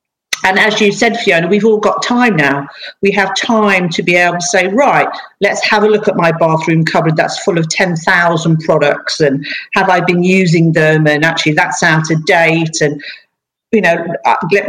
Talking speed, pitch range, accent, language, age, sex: 195 wpm, 165-200 Hz, British, English, 50-69, female